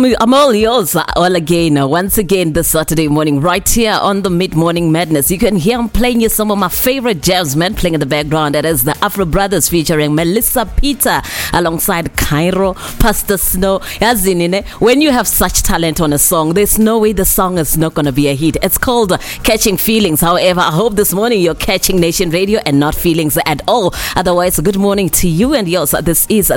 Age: 20-39